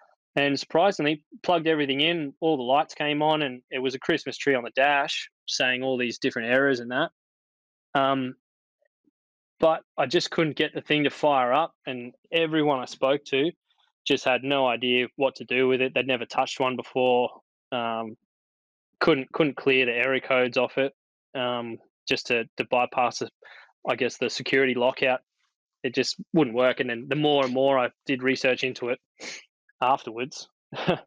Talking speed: 180 wpm